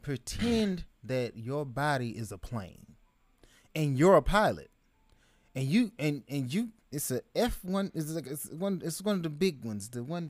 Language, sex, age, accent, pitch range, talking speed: English, male, 30-49, American, 155-250 Hz, 185 wpm